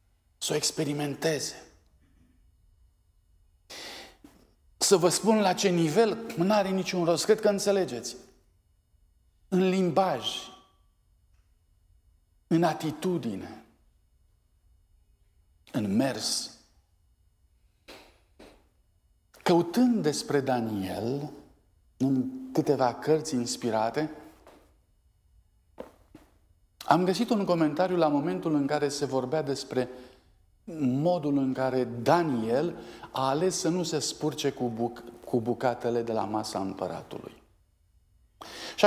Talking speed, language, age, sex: 90 wpm, Romanian, 50-69, male